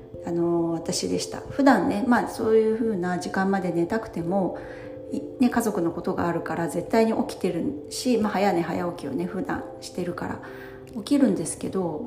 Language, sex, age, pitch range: Japanese, female, 40-59, 170-245 Hz